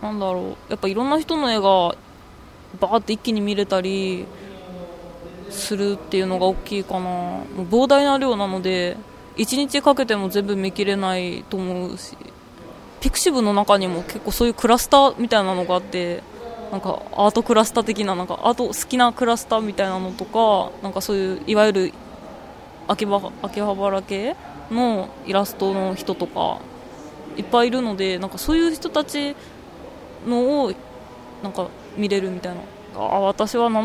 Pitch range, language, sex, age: 185-230 Hz, Japanese, female, 20-39